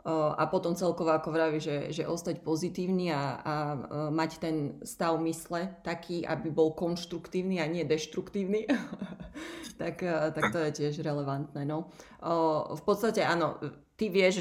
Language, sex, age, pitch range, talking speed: Slovak, female, 30-49, 160-190 Hz, 140 wpm